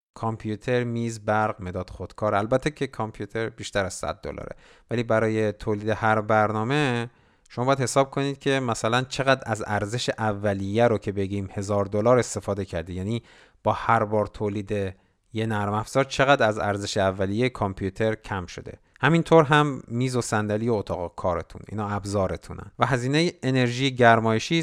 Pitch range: 105-140 Hz